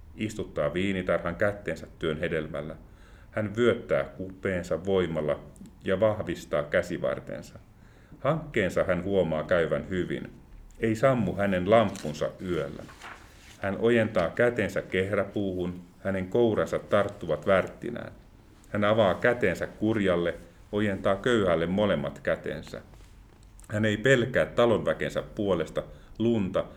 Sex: male